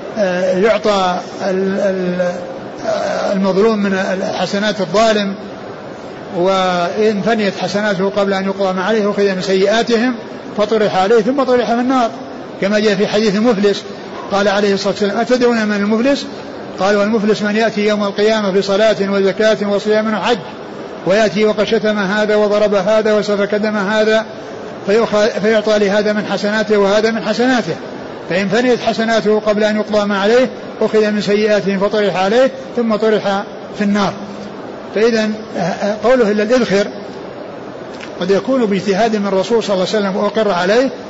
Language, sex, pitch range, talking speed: Arabic, male, 195-220 Hz, 135 wpm